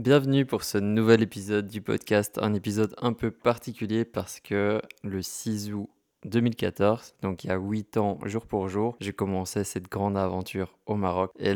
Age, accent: 20-39, French